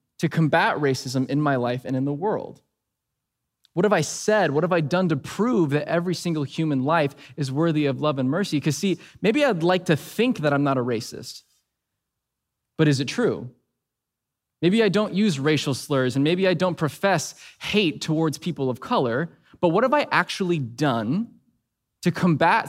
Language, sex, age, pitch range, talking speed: English, male, 20-39, 135-175 Hz, 190 wpm